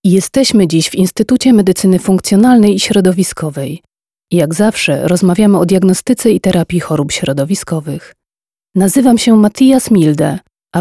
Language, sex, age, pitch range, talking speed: Polish, female, 30-49, 160-210 Hz, 120 wpm